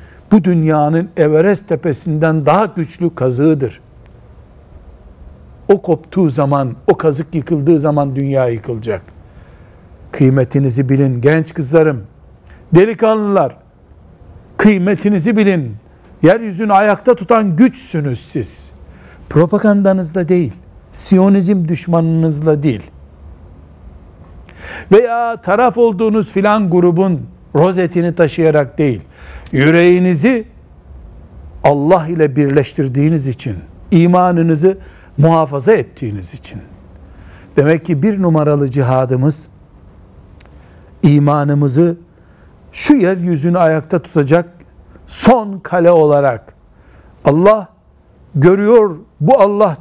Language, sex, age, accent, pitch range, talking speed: Turkish, male, 60-79, native, 110-180 Hz, 80 wpm